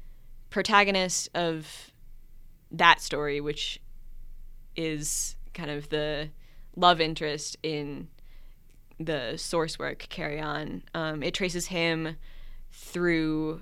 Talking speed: 95 wpm